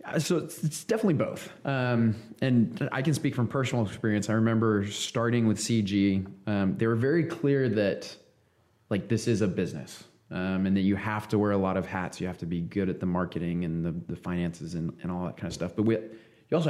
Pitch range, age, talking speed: 95-115 Hz, 20-39, 225 wpm